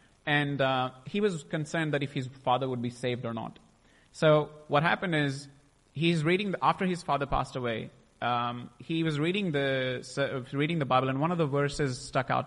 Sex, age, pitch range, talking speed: male, 30-49, 130-180 Hz, 200 wpm